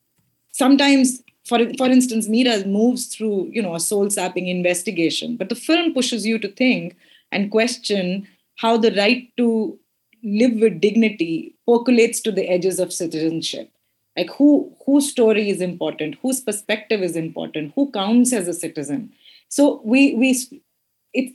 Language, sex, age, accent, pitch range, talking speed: English, female, 30-49, Indian, 170-235 Hz, 150 wpm